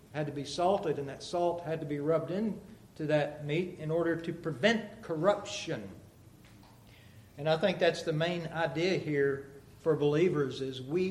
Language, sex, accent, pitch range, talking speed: English, male, American, 130-190 Hz, 165 wpm